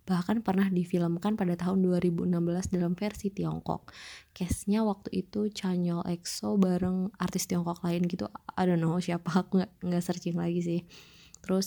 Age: 20-39